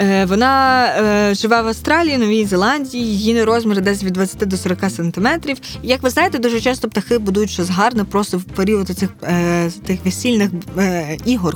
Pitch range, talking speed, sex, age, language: 190-235 Hz, 165 wpm, female, 20-39, Ukrainian